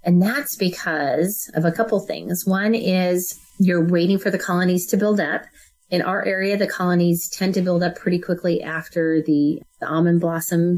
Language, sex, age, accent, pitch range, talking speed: English, female, 30-49, American, 165-205 Hz, 185 wpm